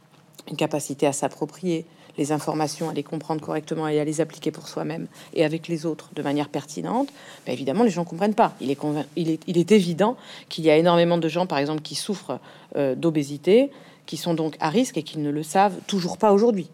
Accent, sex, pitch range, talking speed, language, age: French, female, 150-195 Hz, 220 wpm, French, 40-59